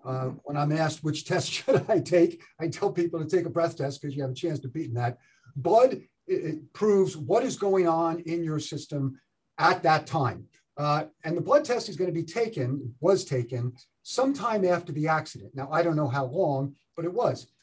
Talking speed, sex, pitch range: 210 wpm, male, 140-175 Hz